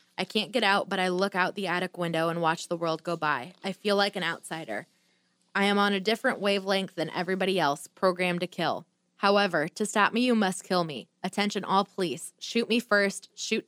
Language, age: English, 20-39